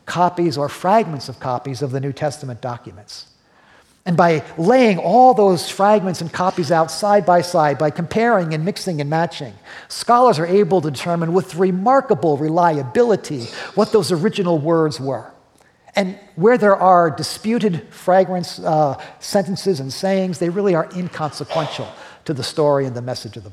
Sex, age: male, 50-69